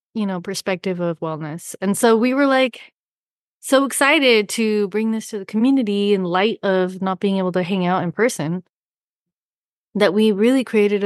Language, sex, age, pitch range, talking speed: English, female, 20-39, 180-220 Hz, 180 wpm